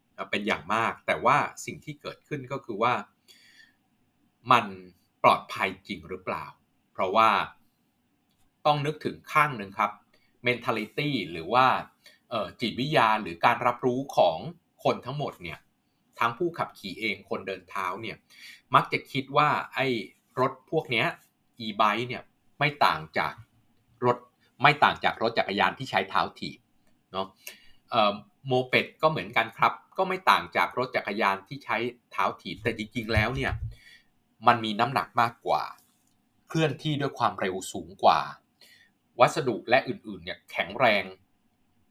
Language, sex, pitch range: Thai, male, 105-140 Hz